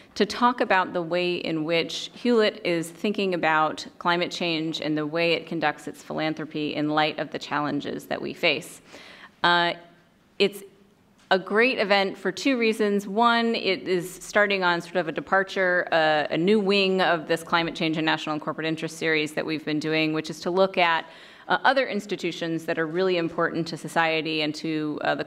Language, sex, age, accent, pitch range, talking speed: English, female, 30-49, American, 155-190 Hz, 190 wpm